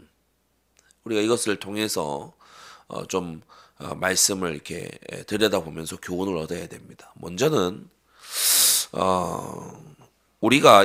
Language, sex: Korean, male